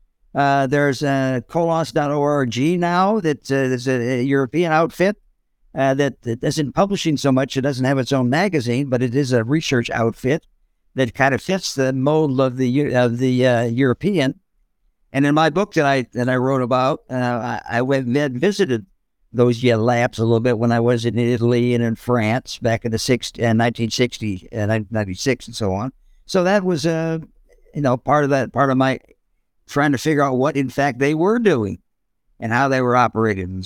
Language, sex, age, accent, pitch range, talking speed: English, male, 60-79, American, 120-155 Hz, 205 wpm